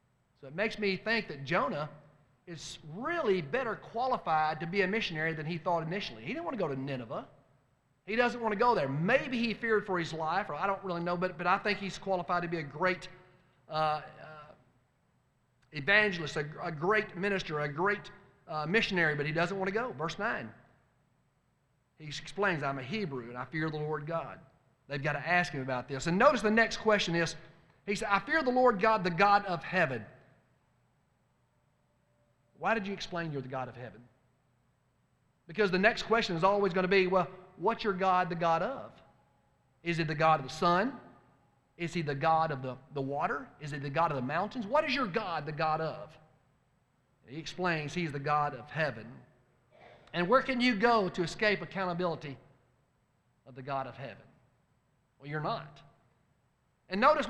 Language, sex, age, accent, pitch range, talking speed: English, male, 40-59, American, 140-200 Hz, 195 wpm